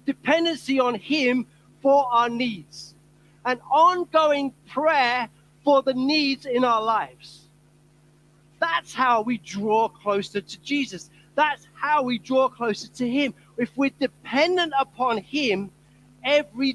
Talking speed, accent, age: 125 wpm, British, 40-59